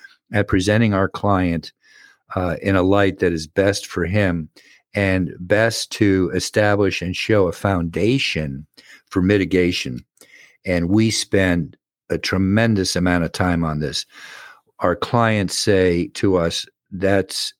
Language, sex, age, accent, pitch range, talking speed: English, male, 50-69, American, 85-100 Hz, 135 wpm